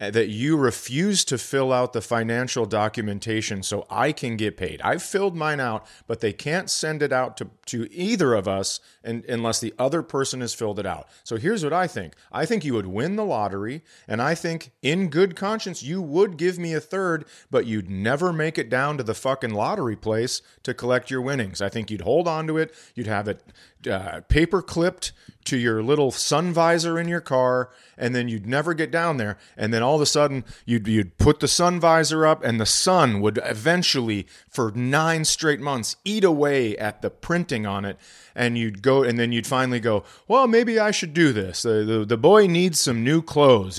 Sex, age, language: male, 40-59, English